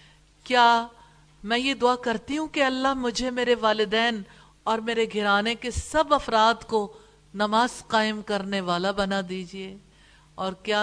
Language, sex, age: English, female, 50-69